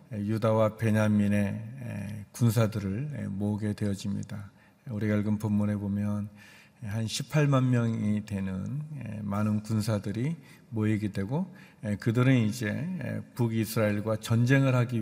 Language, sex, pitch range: Korean, male, 105-120 Hz